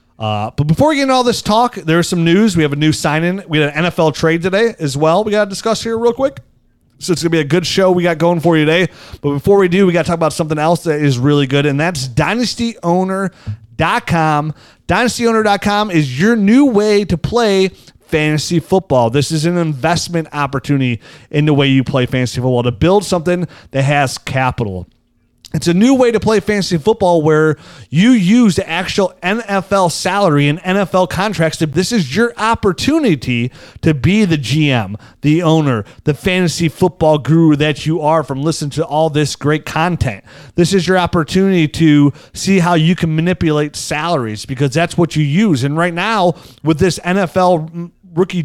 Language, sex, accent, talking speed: English, male, American, 195 wpm